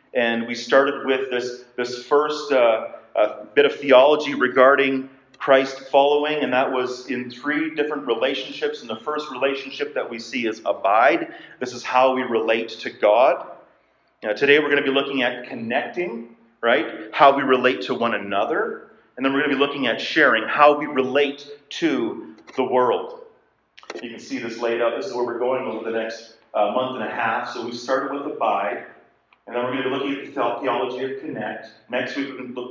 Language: English